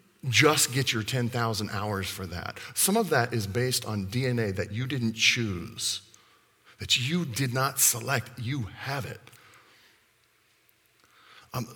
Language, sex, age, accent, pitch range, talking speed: English, male, 40-59, American, 105-145 Hz, 140 wpm